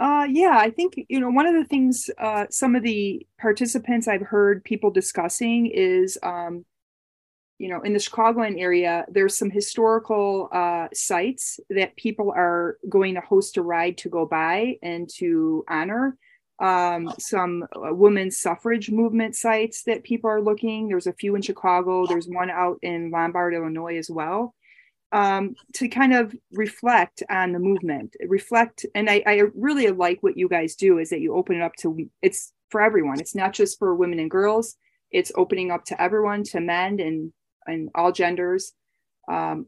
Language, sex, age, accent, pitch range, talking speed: English, female, 30-49, American, 175-230 Hz, 175 wpm